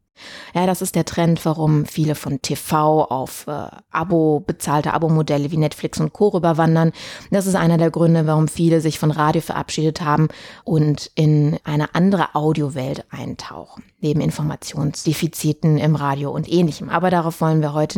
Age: 30-49